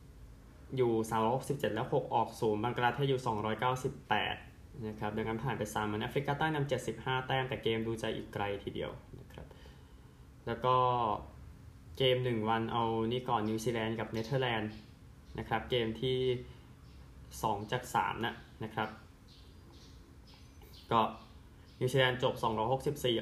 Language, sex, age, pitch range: Thai, male, 20-39, 105-125 Hz